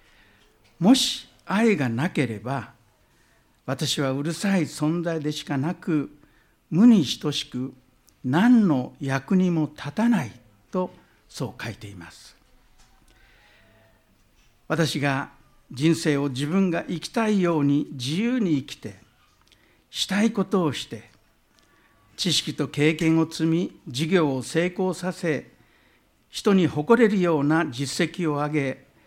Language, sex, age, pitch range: Japanese, male, 60-79, 120-175 Hz